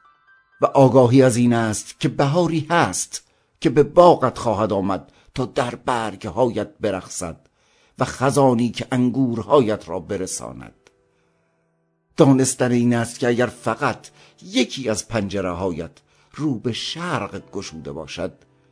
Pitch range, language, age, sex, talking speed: 100-135 Hz, Persian, 50-69, male, 120 wpm